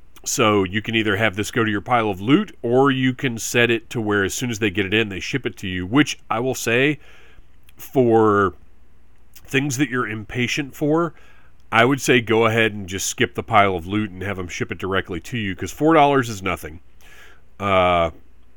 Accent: American